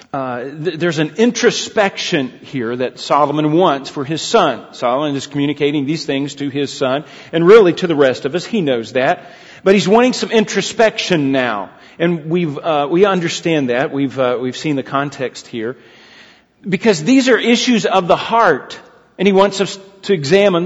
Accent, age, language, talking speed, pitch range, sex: American, 40-59, English, 180 wpm, 150-205 Hz, male